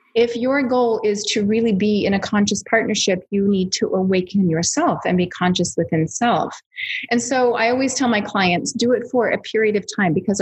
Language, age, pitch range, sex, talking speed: English, 30-49, 180-225 Hz, female, 205 wpm